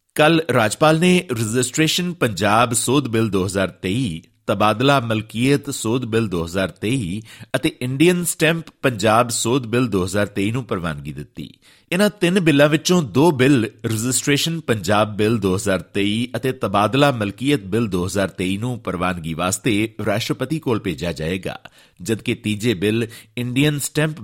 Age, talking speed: 50-69, 125 wpm